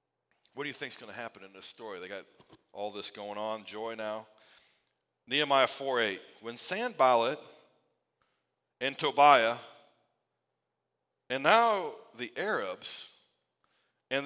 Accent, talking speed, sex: American, 130 wpm, male